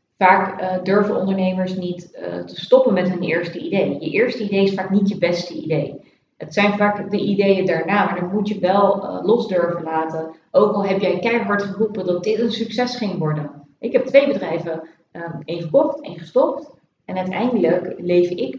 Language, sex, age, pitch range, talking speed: Dutch, female, 30-49, 160-200 Hz, 195 wpm